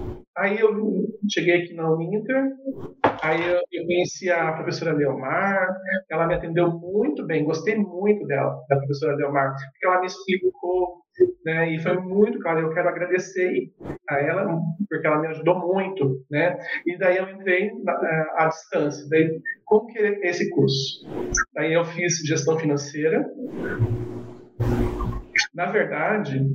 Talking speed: 140 wpm